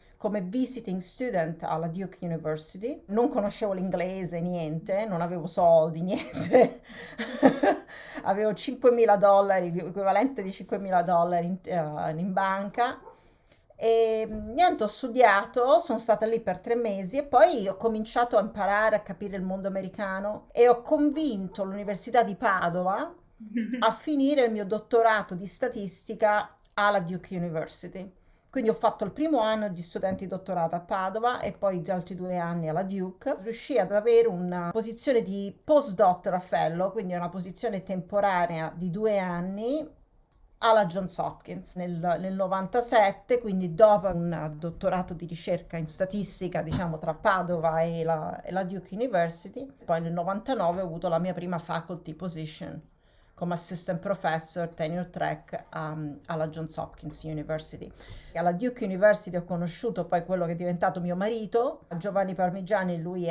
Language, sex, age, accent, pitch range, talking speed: Italian, female, 40-59, native, 175-215 Hz, 145 wpm